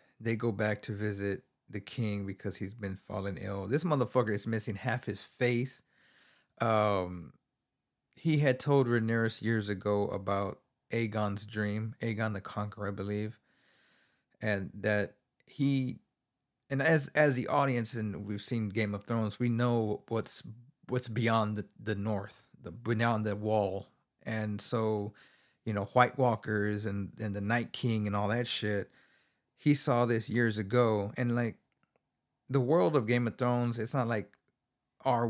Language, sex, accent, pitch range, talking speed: English, male, American, 105-120 Hz, 155 wpm